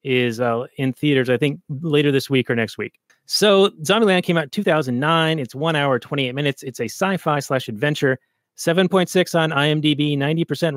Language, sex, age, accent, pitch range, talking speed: English, male, 30-49, American, 130-165 Hz, 185 wpm